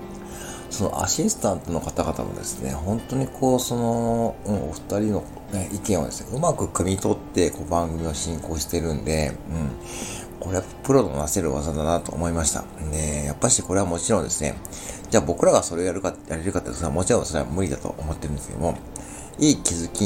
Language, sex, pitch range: Japanese, male, 75-115 Hz